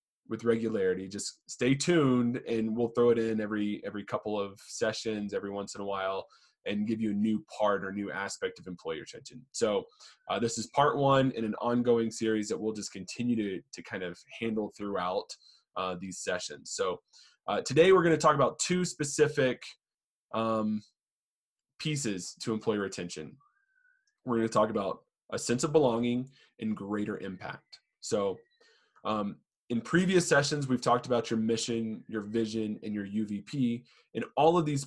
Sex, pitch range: male, 105-130 Hz